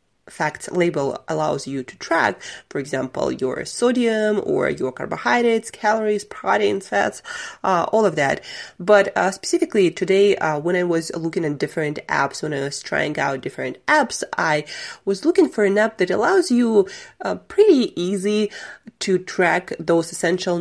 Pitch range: 155-200 Hz